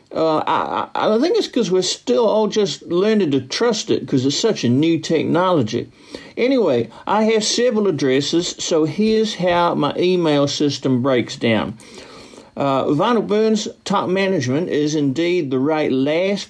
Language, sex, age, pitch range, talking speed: English, male, 60-79, 130-180 Hz, 155 wpm